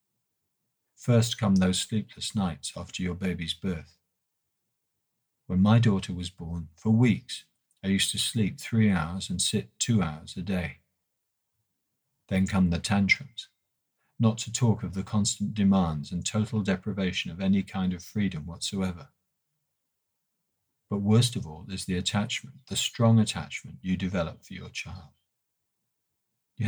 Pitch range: 90-110 Hz